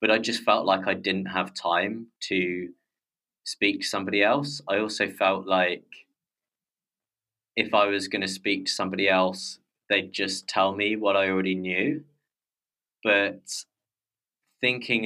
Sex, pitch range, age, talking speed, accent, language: male, 90-100 Hz, 20-39, 145 wpm, British, English